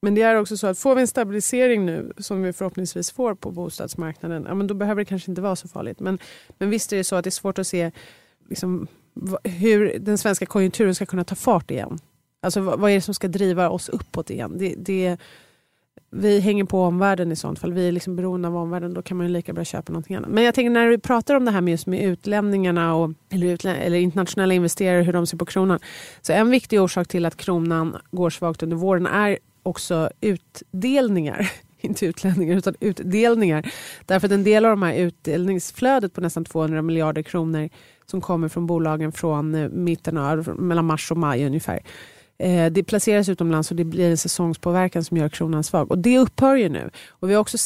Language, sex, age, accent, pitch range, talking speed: Swedish, female, 30-49, native, 170-205 Hz, 210 wpm